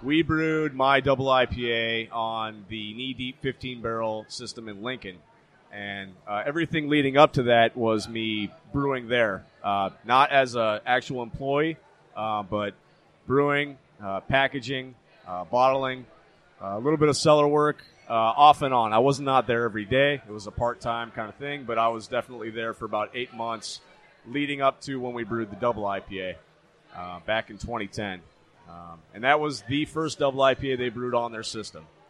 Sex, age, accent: male, 30-49, American